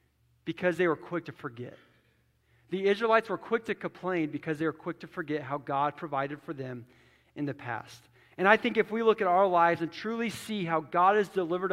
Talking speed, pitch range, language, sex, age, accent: 215 wpm, 150-195 Hz, English, male, 40-59, American